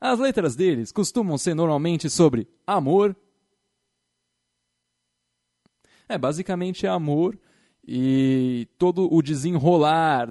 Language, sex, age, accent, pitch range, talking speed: Portuguese, male, 20-39, Brazilian, 135-195 Hz, 85 wpm